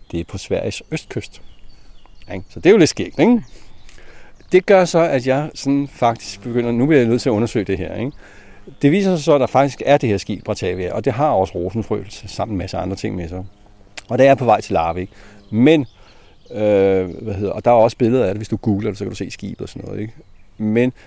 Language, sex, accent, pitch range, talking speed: Danish, male, native, 100-125 Hz, 250 wpm